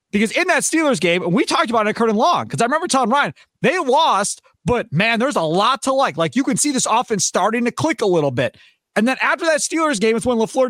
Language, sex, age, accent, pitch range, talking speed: English, male, 30-49, American, 195-275 Hz, 265 wpm